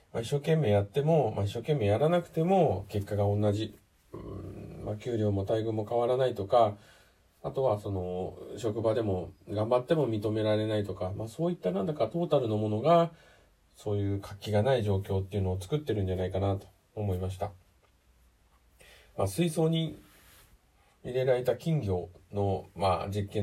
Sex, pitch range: male, 100-140 Hz